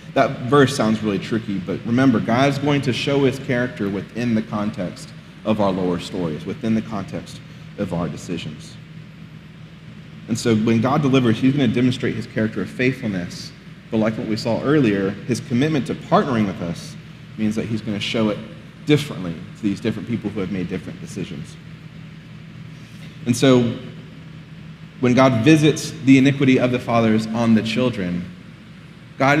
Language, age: English, 40-59